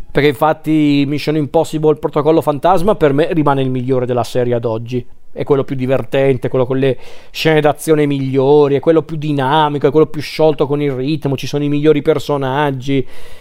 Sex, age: male, 40-59